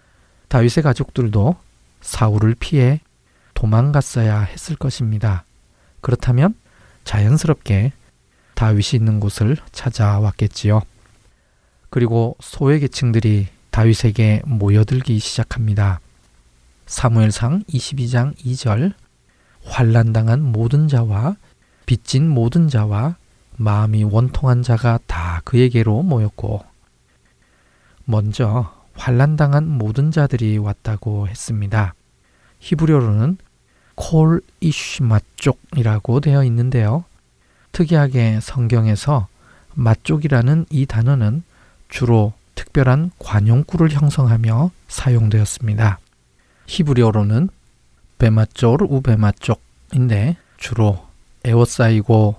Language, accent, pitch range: Korean, native, 105-130 Hz